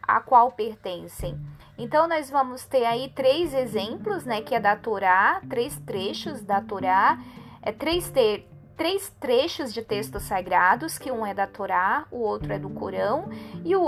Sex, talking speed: female, 170 wpm